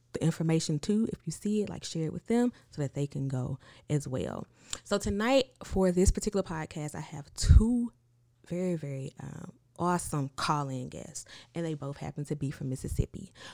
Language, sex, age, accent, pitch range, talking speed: English, female, 20-39, American, 135-170 Hz, 185 wpm